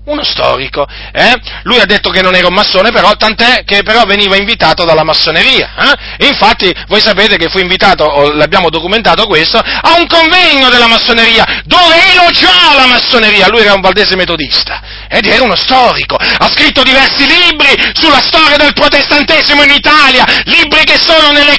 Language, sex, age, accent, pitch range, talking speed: Italian, male, 40-59, native, 220-315 Hz, 175 wpm